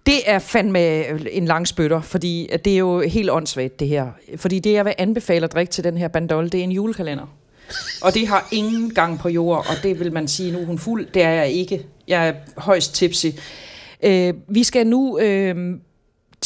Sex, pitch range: female, 155-190 Hz